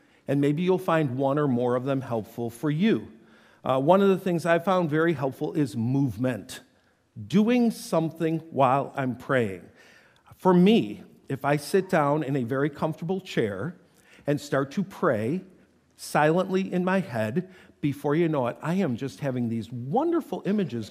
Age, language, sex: 50-69, English, male